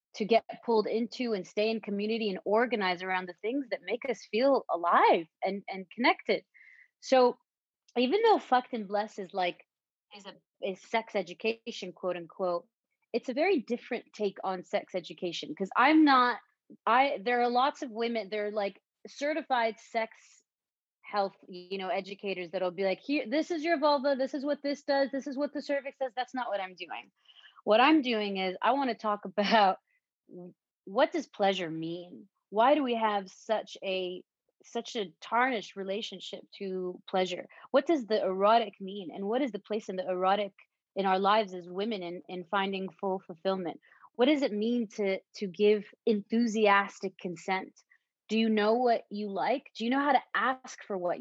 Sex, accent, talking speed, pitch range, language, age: female, American, 185 wpm, 190-250 Hz, English, 30-49